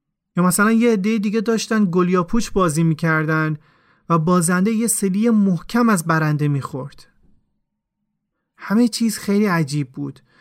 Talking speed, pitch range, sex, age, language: 125 wpm, 165-215 Hz, male, 30-49, Persian